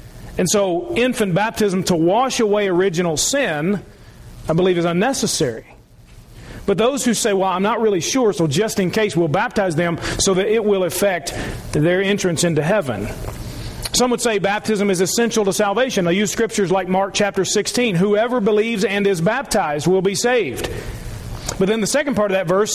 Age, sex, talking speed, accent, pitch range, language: 40-59, male, 180 wpm, American, 190-230 Hz, English